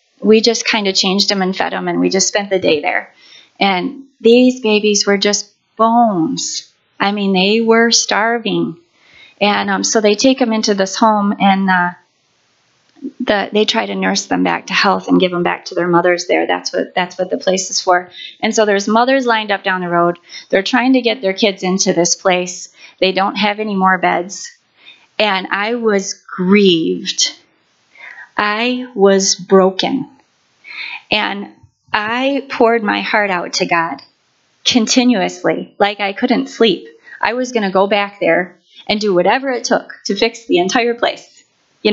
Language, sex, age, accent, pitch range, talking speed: English, female, 30-49, American, 190-230 Hz, 180 wpm